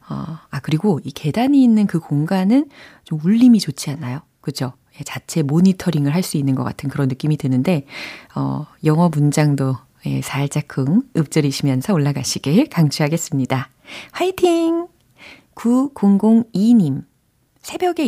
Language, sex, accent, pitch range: Korean, female, native, 145-215 Hz